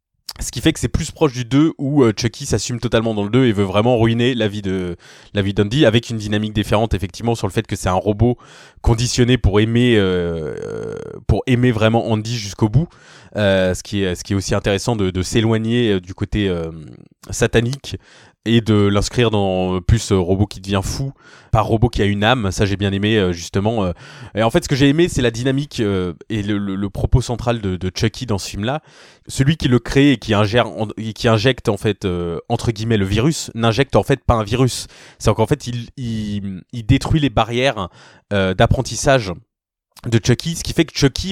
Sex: male